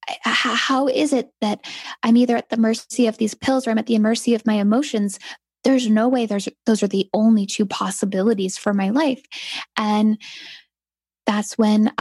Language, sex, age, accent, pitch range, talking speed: English, female, 10-29, American, 210-245 Hz, 180 wpm